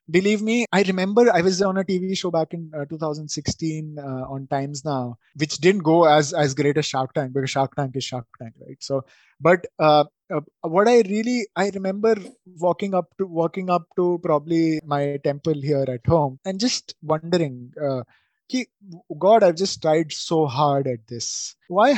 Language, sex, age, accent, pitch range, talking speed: English, male, 20-39, Indian, 145-185 Hz, 190 wpm